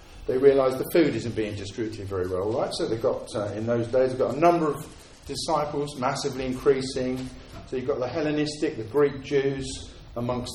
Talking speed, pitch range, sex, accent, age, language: 195 wpm, 110-155 Hz, male, British, 50-69, English